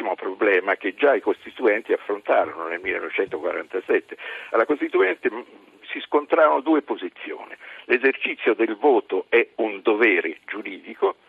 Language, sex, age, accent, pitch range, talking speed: Italian, male, 50-69, native, 370-445 Hz, 120 wpm